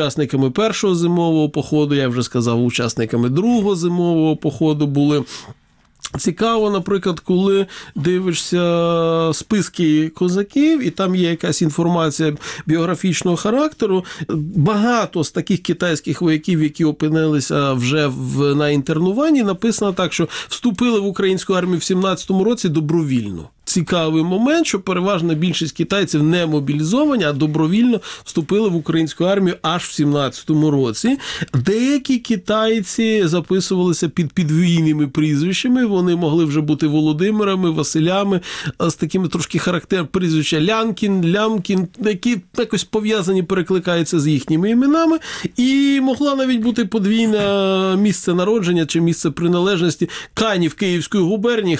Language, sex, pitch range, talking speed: Ukrainian, male, 160-200 Hz, 120 wpm